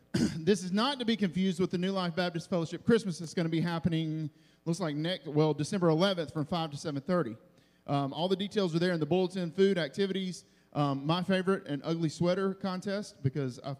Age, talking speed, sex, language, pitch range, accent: 40-59, 210 wpm, male, English, 145-190 Hz, American